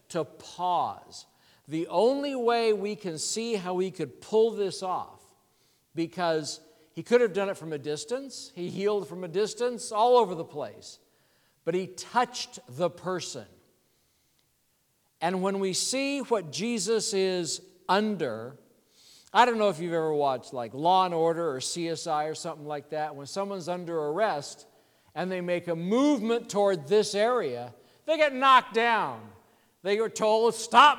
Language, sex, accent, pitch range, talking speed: English, male, American, 165-215 Hz, 160 wpm